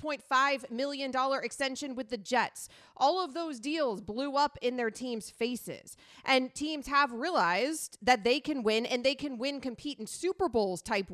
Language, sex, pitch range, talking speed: English, female, 200-260 Hz, 185 wpm